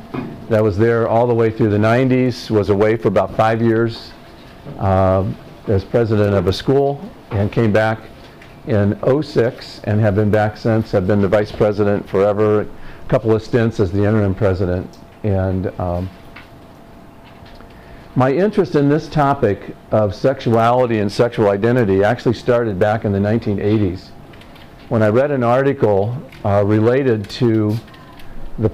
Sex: male